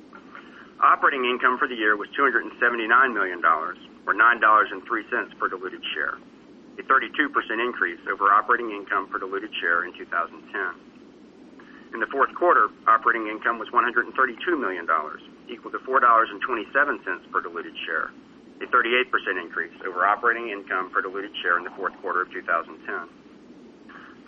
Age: 40-59